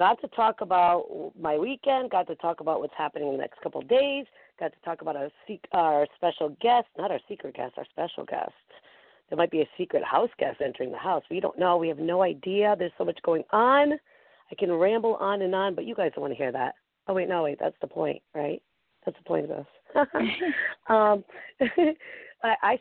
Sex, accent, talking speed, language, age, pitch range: female, American, 220 wpm, English, 40-59, 165-245 Hz